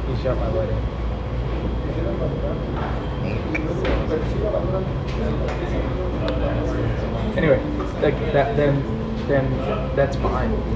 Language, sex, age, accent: English, male, 20-39, American